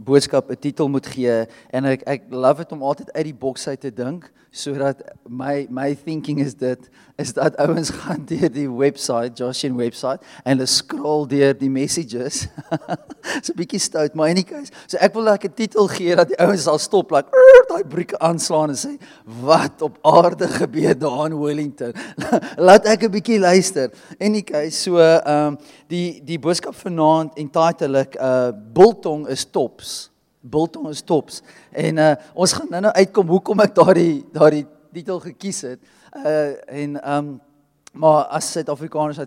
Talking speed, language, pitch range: 160 wpm, English, 140-175 Hz